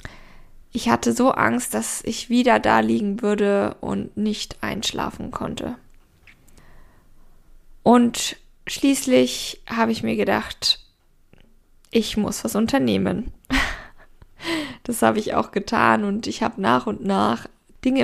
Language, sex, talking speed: German, female, 120 wpm